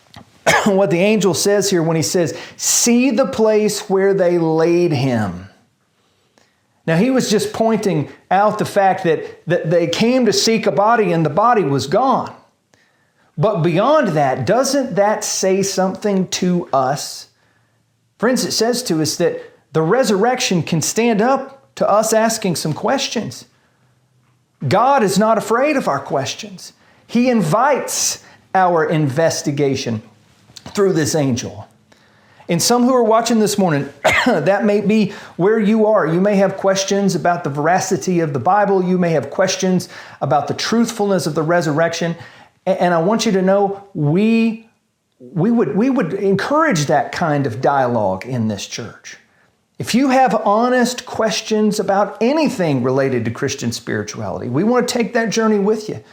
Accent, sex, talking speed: American, male, 155 wpm